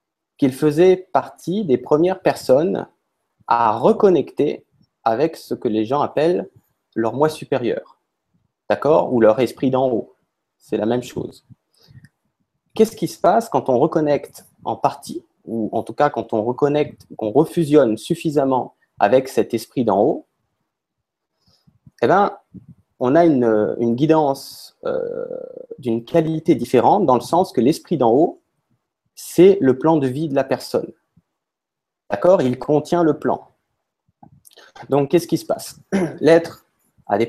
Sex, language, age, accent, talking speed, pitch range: male, French, 30-49, French, 145 wpm, 125-170 Hz